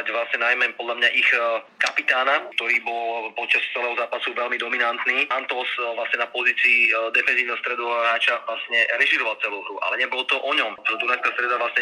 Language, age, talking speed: Slovak, 30-49, 160 wpm